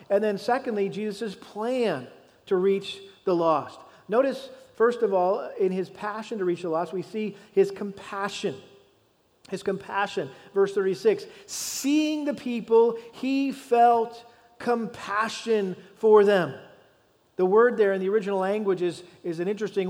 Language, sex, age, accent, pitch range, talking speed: English, male, 40-59, American, 185-230 Hz, 140 wpm